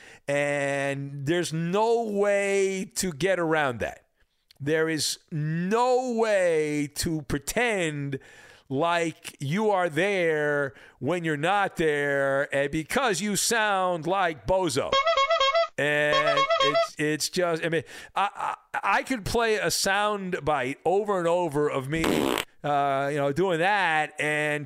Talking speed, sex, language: 130 wpm, male, English